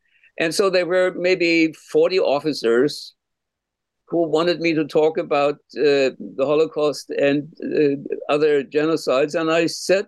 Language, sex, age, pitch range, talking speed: English, male, 60-79, 155-260 Hz, 135 wpm